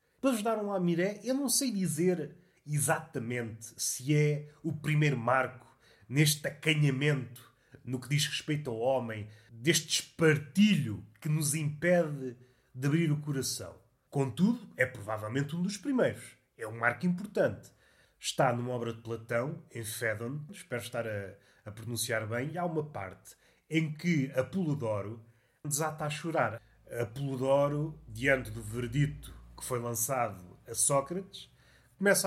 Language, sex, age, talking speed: Portuguese, male, 30-49, 140 wpm